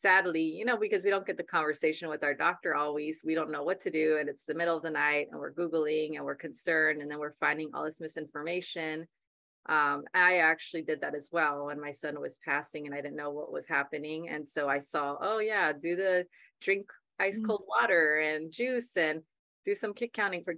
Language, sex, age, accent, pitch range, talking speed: English, female, 30-49, American, 150-175 Hz, 225 wpm